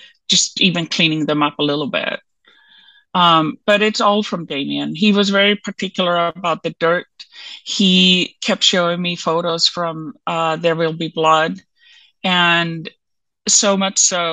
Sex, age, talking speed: female, 30-49, 150 wpm